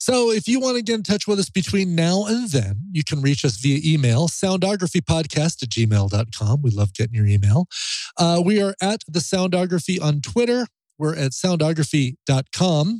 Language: English